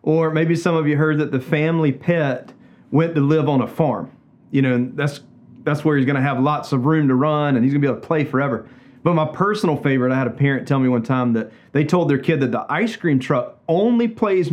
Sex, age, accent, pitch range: male, 30-49, American, 135-175 Hz